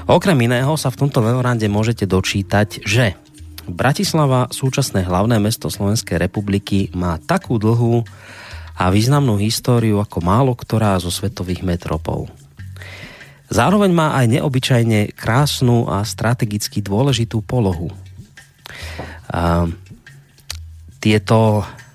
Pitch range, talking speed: 95-130 Hz, 100 wpm